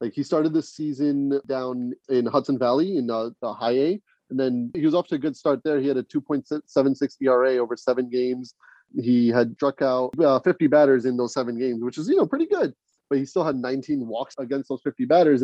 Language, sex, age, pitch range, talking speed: English, male, 30-49, 125-150 Hz, 230 wpm